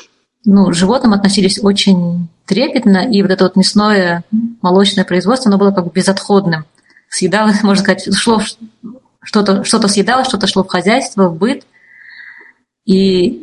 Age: 20-39